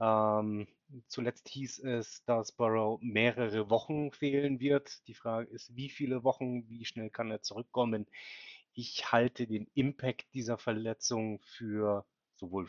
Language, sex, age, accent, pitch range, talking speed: German, male, 30-49, German, 100-120 Hz, 135 wpm